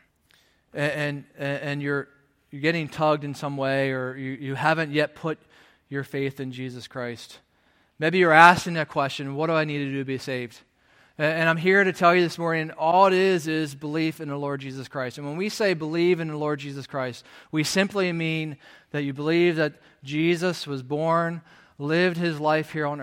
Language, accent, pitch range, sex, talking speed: English, American, 140-165 Hz, male, 205 wpm